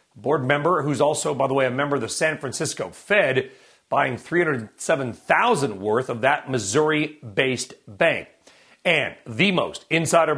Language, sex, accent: English, male, American